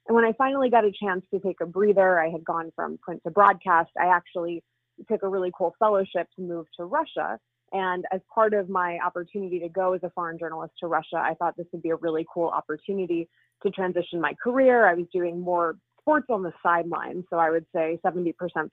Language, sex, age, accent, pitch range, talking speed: English, female, 20-39, American, 170-205 Hz, 220 wpm